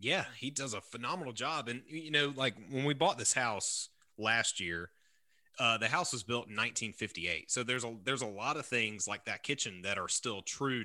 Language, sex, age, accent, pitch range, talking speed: English, male, 30-49, American, 100-130 Hz, 215 wpm